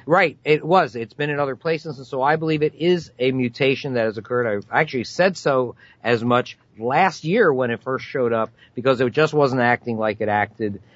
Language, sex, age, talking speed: Danish, male, 50-69, 220 wpm